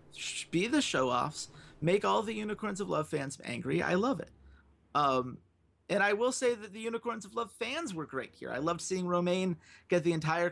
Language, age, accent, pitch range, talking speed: English, 30-49, American, 135-180 Hz, 200 wpm